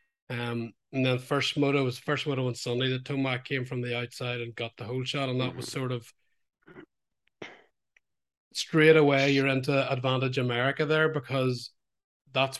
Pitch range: 120-135 Hz